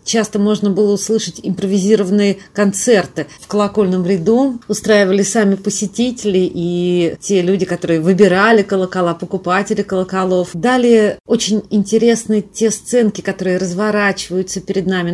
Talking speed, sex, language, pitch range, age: 115 wpm, female, Russian, 185-220 Hz, 30-49